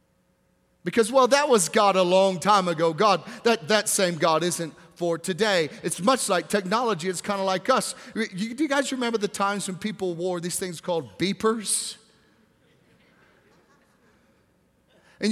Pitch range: 185-230 Hz